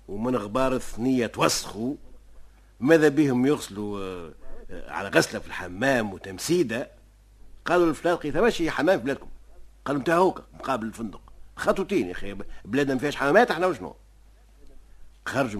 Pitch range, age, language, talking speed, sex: 95-155 Hz, 60-79, Arabic, 125 wpm, male